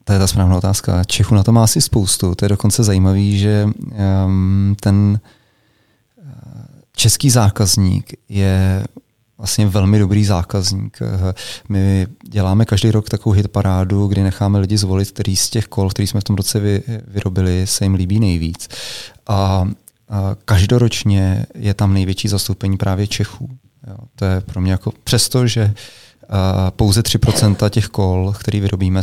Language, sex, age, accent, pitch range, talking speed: Czech, male, 30-49, native, 95-110 Hz, 145 wpm